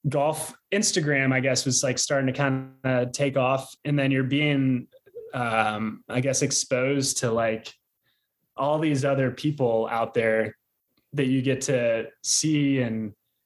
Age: 20-39